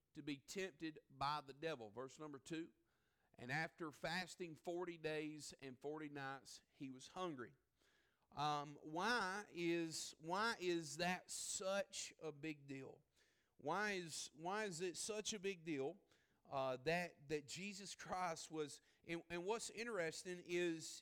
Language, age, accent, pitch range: English, 40-59, American, 145-180 Hz